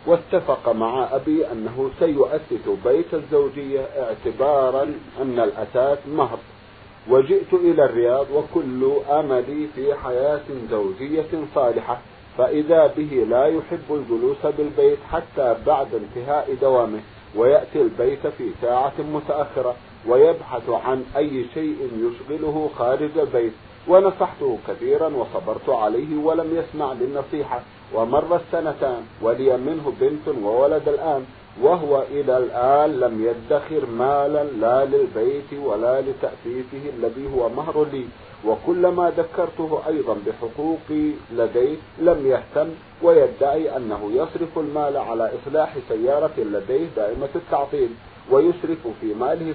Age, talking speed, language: 50-69, 110 wpm, Arabic